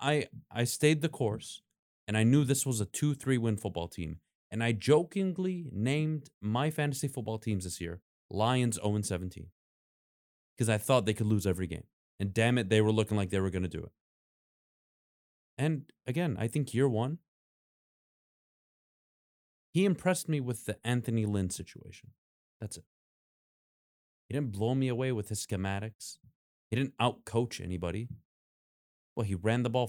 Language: English